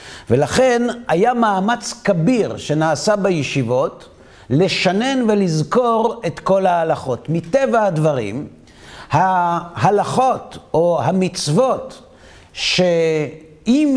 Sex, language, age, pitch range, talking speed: male, Hebrew, 50-69, 155-230 Hz, 75 wpm